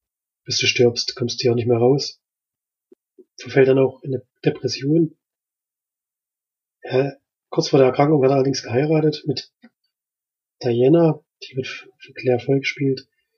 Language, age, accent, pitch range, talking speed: German, 30-49, German, 125-145 Hz, 145 wpm